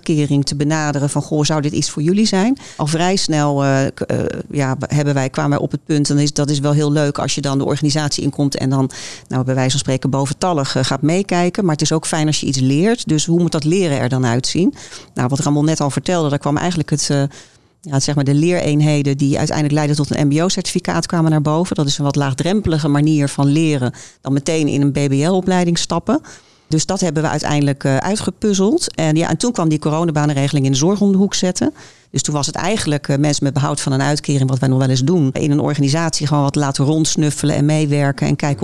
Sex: female